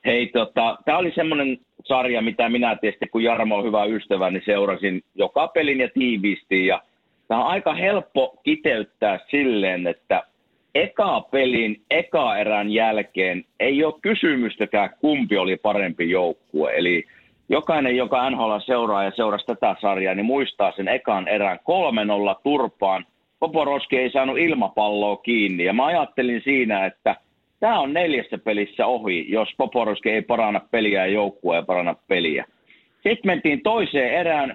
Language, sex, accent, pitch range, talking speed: Finnish, male, native, 105-140 Hz, 145 wpm